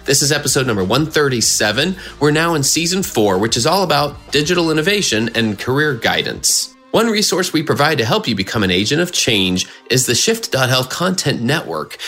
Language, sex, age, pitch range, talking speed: English, male, 30-49, 115-155 Hz, 180 wpm